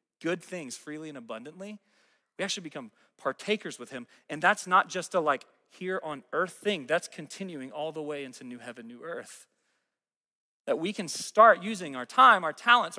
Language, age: English, 30-49